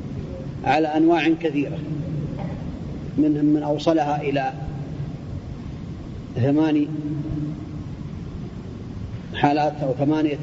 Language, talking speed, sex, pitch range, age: Arabic, 65 wpm, male, 145-160 Hz, 40-59